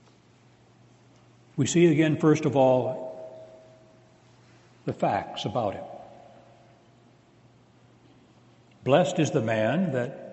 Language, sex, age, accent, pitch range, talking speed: English, male, 60-79, American, 125-185 Hz, 85 wpm